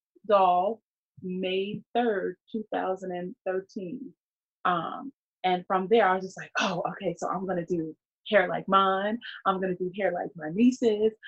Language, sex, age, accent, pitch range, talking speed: English, female, 20-39, American, 175-220 Hz, 150 wpm